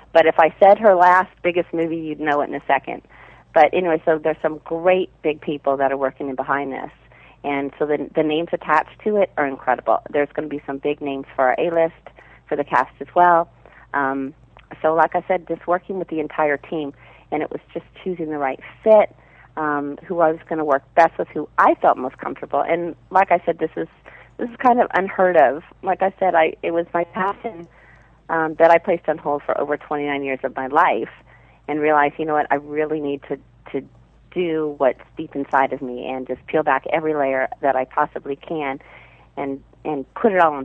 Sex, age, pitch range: female, 40-59, 140-170 Hz